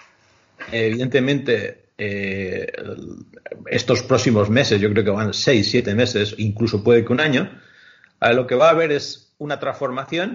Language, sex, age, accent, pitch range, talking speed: Spanish, male, 40-59, Spanish, 105-135 Hz, 145 wpm